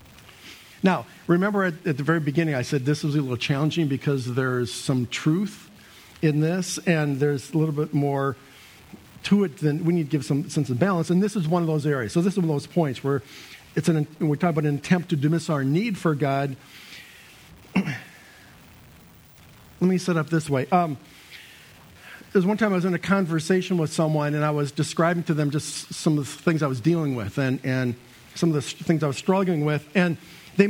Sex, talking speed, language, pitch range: male, 210 wpm, English, 130-165 Hz